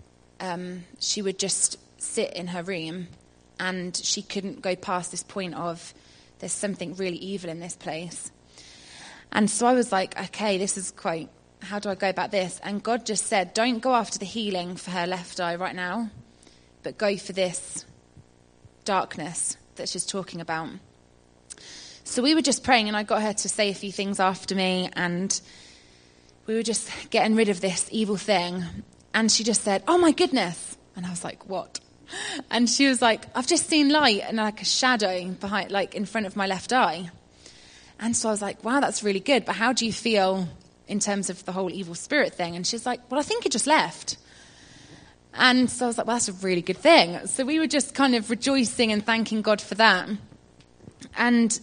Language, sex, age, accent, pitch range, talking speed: English, female, 20-39, British, 175-230 Hz, 200 wpm